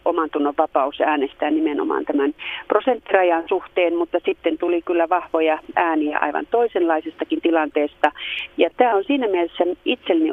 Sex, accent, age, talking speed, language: female, native, 40-59, 130 wpm, Finnish